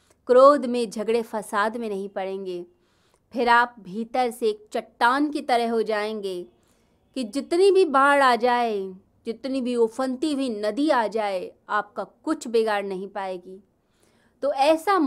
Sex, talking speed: female, 145 wpm